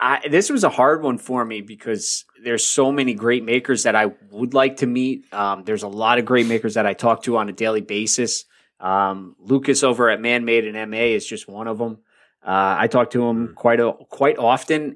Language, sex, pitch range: English, male, 105-130 Hz